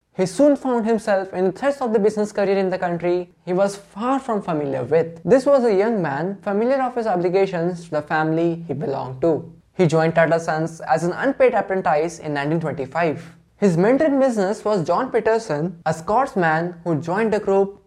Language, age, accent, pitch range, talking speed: English, 20-39, Indian, 155-200 Hz, 195 wpm